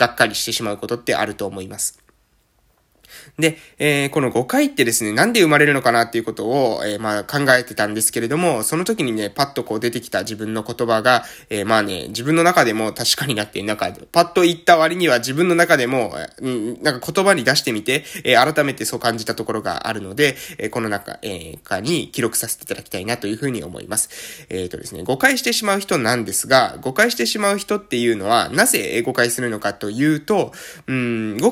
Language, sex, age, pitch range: Japanese, male, 20-39, 115-175 Hz